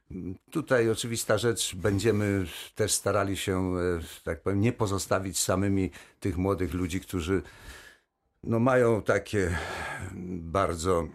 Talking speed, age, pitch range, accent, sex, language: 110 wpm, 60-79, 85-95 Hz, native, male, Polish